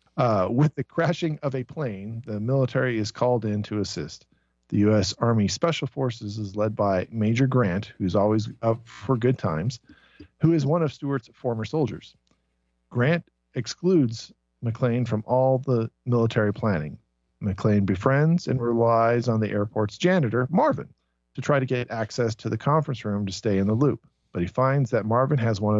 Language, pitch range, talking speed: English, 100-130 Hz, 175 wpm